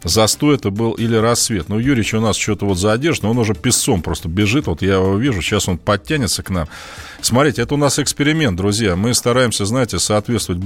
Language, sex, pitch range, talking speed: Russian, male, 95-125 Hz, 205 wpm